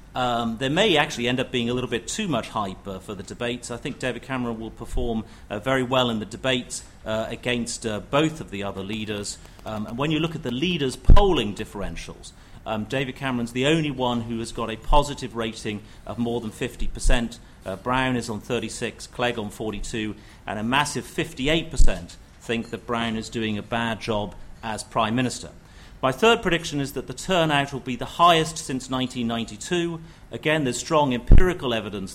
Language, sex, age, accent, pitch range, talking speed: English, male, 40-59, British, 110-135 Hz, 195 wpm